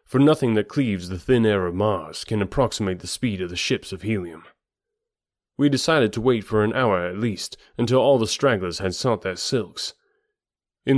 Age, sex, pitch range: 30-49, male, 100-130 Hz